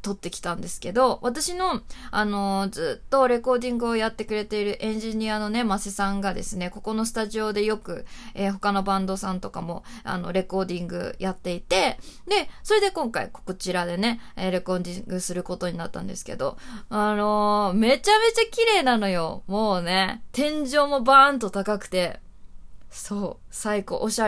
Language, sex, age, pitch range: Japanese, female, 20-39, 185-270 Hz